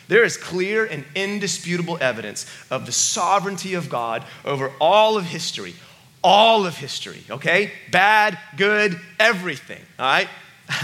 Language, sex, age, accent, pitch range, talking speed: English, male, 30-49, American, 145-195 Hz, 135 wpm